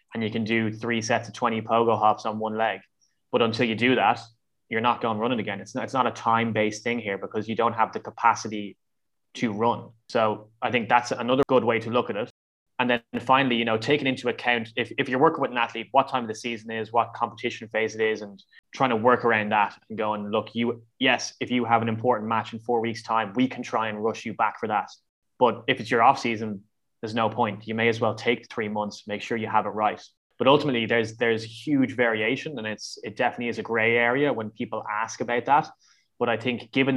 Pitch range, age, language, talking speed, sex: 110-120 Hz, 20-39, English, 245 wpm, male